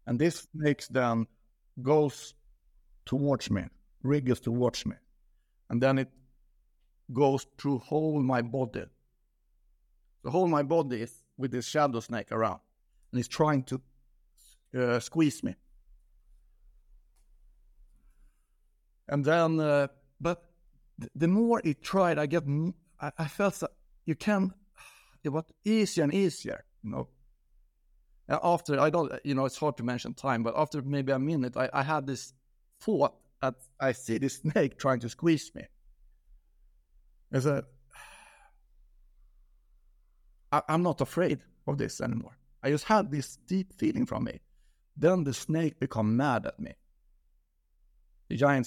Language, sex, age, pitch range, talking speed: English, male, 60-79, 115-150 Hz, 140 wpm